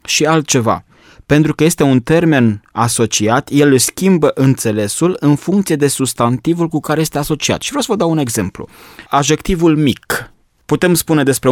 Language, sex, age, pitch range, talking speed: Romanian, male, 20-39, 120-155 Hz, 160 wpm